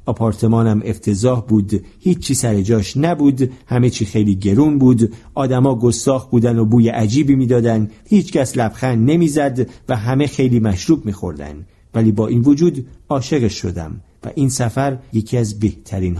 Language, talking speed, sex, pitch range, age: Persian, 150 wpm, male, 110-150 Hz, 50-69